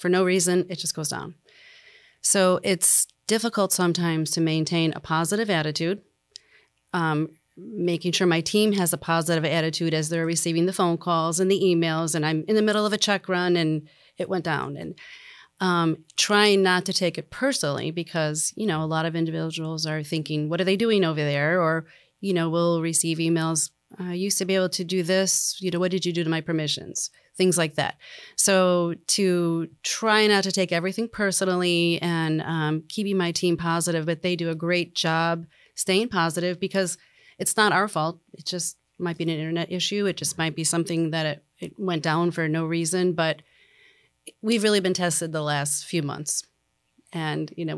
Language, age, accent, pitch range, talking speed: English, 30-49, American, 160-190 Hz, 195 wpm